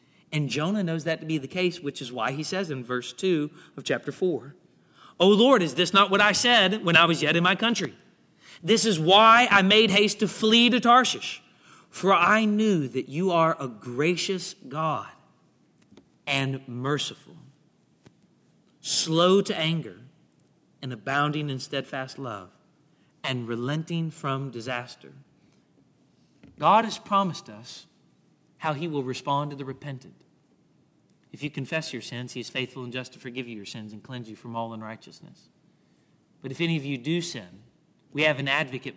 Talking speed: 170 wpm